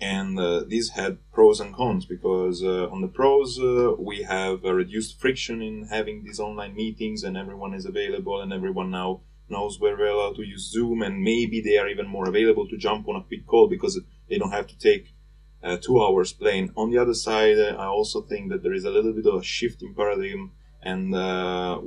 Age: 30-49